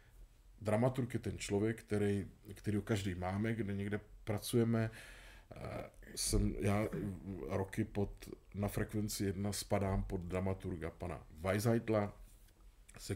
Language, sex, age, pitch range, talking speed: Czech, male, 40-59, 95-110 Hz, 115 wpm